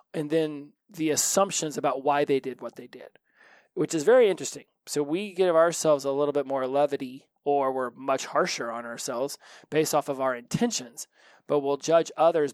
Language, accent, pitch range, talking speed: English, American, 135-160 Hz, 185 wpm